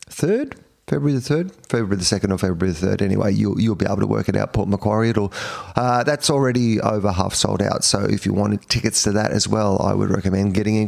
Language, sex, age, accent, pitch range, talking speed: English, male, 30-49, Australian, 100-125 Hz, 235 wpm